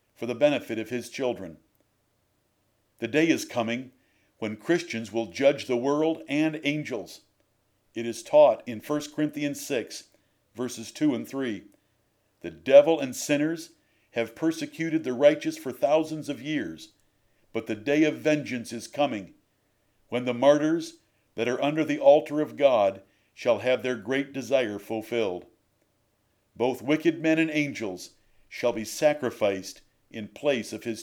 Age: 50-69